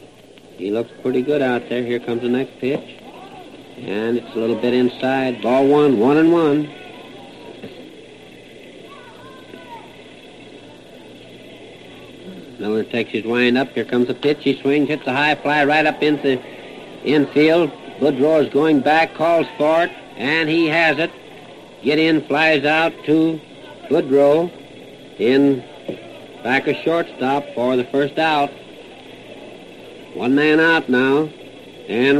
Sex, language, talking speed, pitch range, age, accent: male, English, 135 wpm, 120-150 Hz, 60-79, American